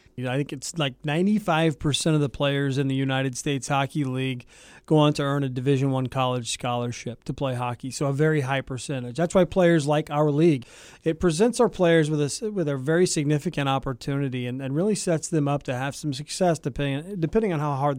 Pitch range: 130-155 Hz